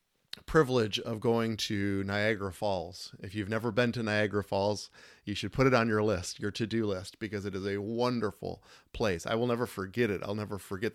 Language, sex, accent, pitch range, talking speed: English, male, American, 100-120 Hz, 205 wpm